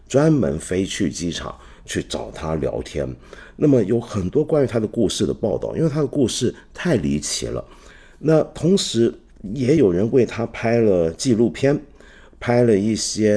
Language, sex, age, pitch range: Chinese, male, 50-69, 80-125 Hz